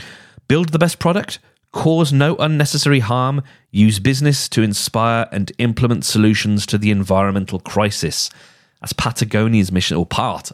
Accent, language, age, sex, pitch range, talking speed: British, English, 30-49, male, 95-125 Hz, 135 wpm